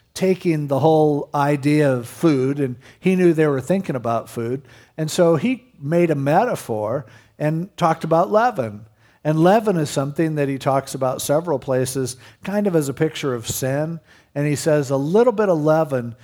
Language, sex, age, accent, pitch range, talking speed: English, male, 50-69, American, 125-160 Hz, 180 wpm